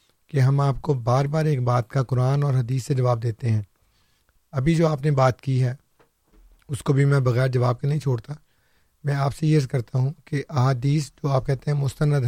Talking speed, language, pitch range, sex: 220 wpm, Urdu, 125-150 Hz, male